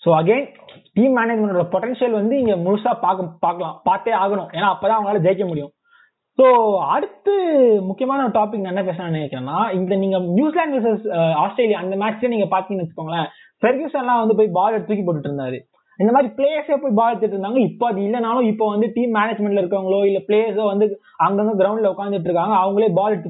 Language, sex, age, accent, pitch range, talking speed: Tamil, male, 20-39, native, 185-240 Hz, 175 wpm